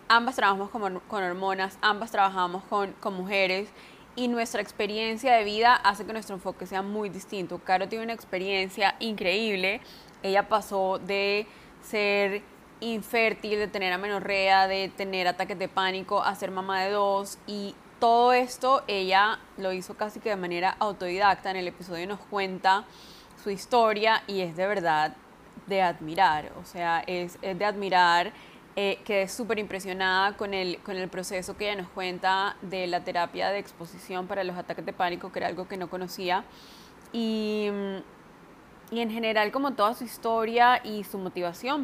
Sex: female